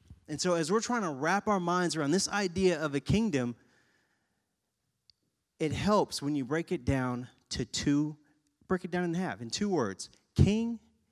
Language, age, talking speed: English, 30-49, 180 wpm